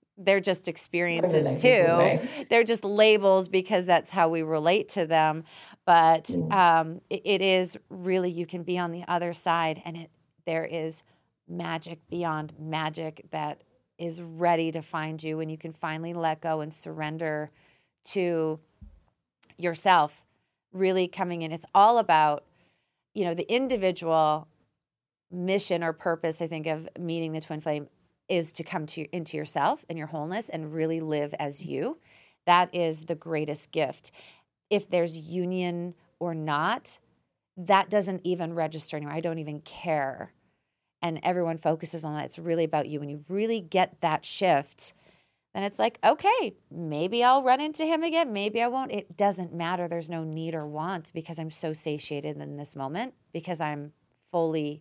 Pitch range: 155-180 Hz